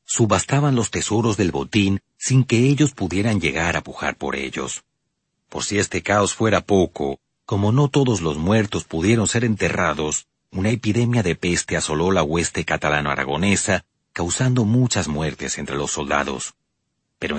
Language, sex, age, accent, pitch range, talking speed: Spanish, male, 40-59, Mexican, 80-110 Hz, 150 wpm